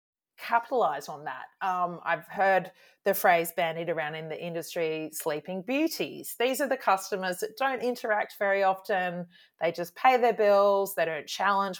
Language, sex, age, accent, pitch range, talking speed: English, female, 30-49, Australian, 165-235 Hz, 165 wpm